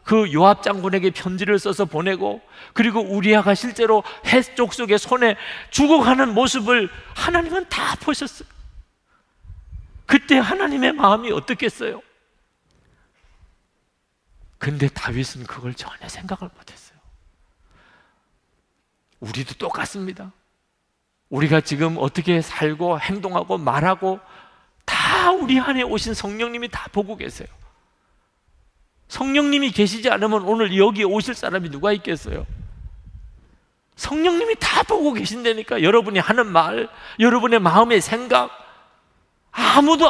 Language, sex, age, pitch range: Korean, male, 40-59, 155-240 Hz